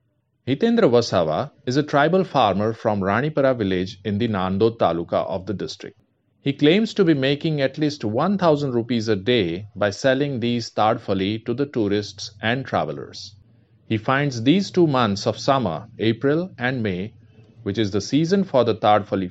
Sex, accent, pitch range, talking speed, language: male, Indian, 105-145 Hz, 165 wpm, English